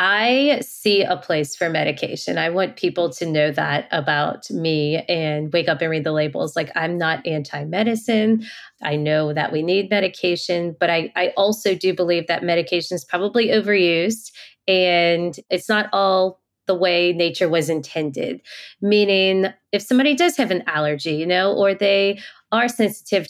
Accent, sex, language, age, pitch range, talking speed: American, female, English, 20-39, 175-215 Hz, 165 wpm